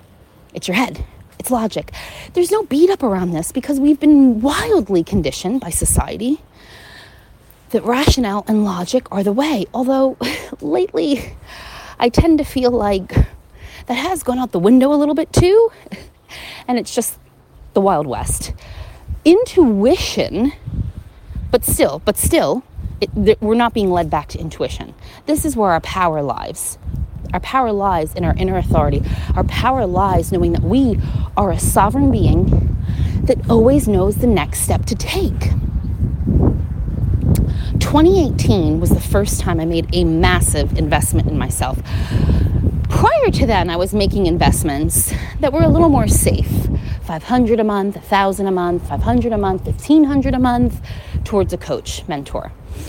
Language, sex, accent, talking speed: English, female, American, 150 wpm